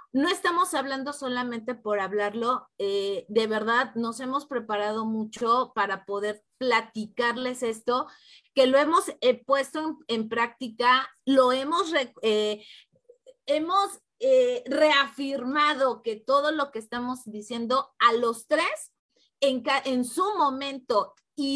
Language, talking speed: Spanish, 120 wpm